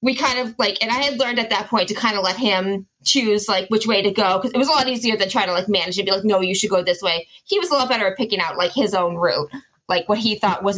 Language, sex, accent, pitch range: English, female, American, 180-230 Hz